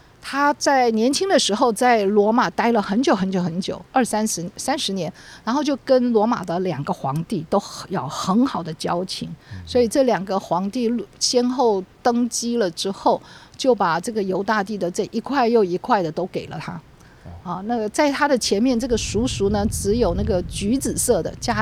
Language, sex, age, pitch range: Chinese, female, 50-69, 180-245 Hz